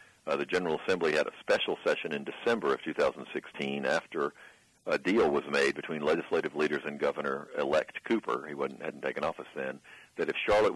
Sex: male